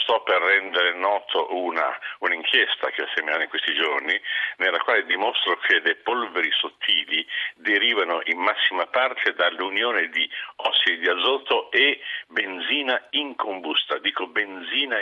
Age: 50-69